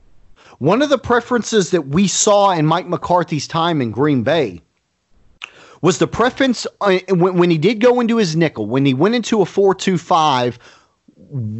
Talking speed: 155 wpm